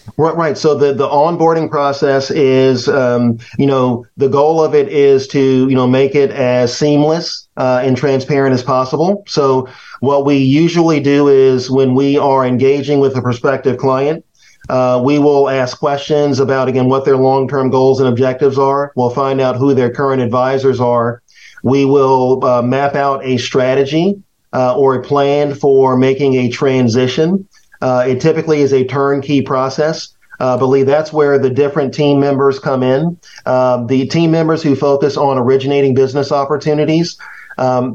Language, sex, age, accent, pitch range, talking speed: English, male, 40-59, American, 130-145 Hz, 170 wpm